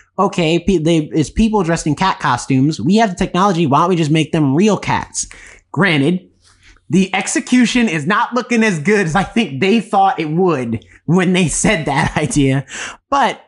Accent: American